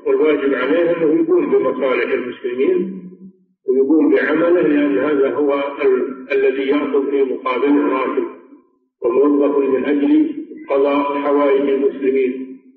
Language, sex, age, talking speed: Arabic, male, 50-69, 110 wpm